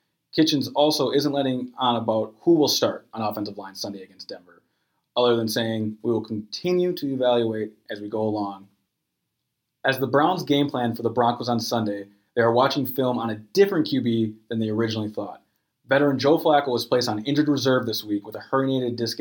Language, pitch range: English, 110-145 Hz